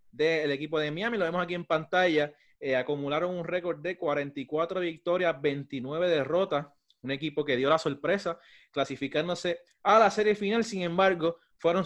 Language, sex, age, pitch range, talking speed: Spanish, male, 30-49, 145-185 Hz, 165 wpm